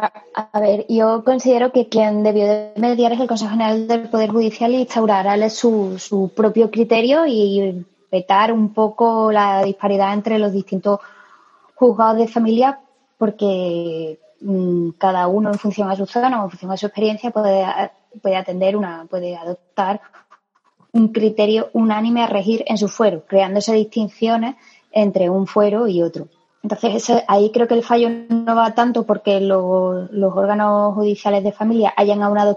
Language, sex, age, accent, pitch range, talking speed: Spanish, female, 20-39, Spanish, 195-230 Hz, 160 wpm